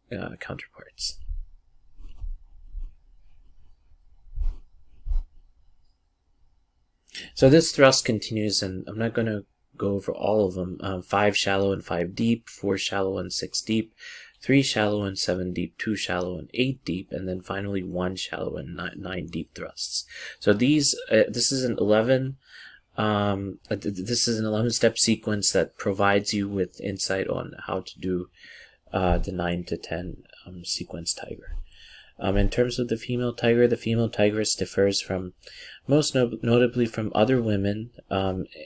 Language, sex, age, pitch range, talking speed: English, male, 30-49, 85-110 Hz, 150 wpm